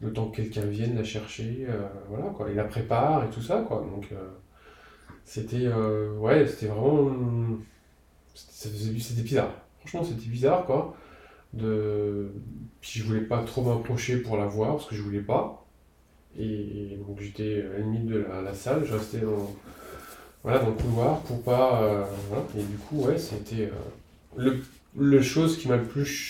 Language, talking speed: French, 185 wpm